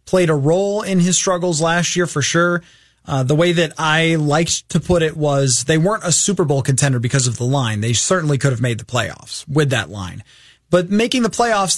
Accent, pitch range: American, 135-180 Hz